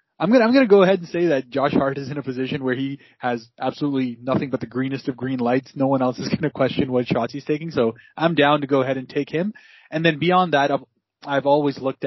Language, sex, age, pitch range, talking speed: English, male, 20-39, 120-140 Hz, 260 wpm